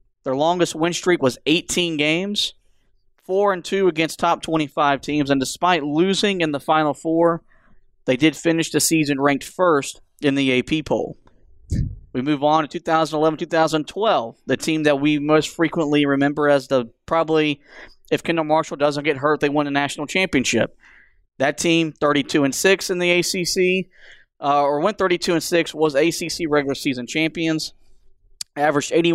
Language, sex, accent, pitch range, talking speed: English, male, American, 140-170 Hz, 160 wpm